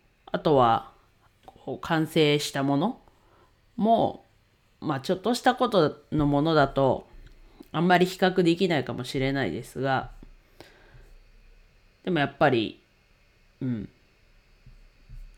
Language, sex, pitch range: Japanese, female, 115-160 Hz